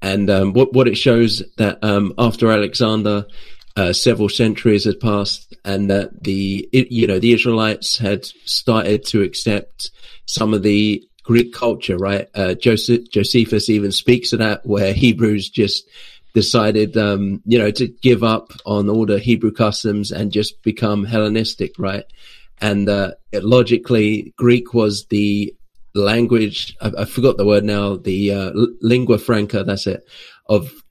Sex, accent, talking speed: male, British, 155 wpm